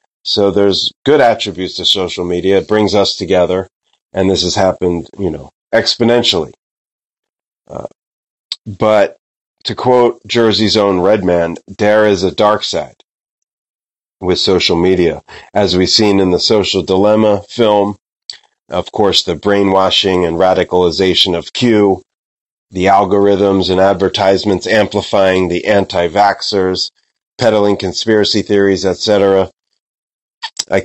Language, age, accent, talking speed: English, 30-49, American, 120 wpm